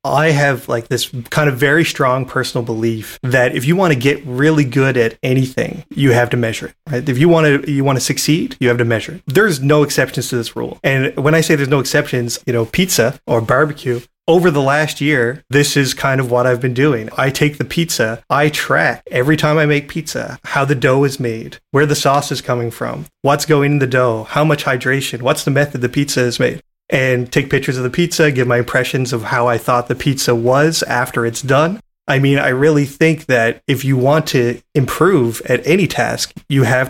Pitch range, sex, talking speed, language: 125-150 Hz, male, 230 wpm, English